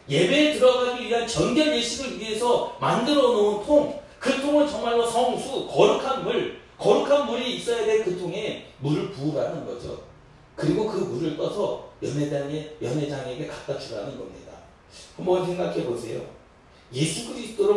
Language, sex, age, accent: Korean, male, 40-59, native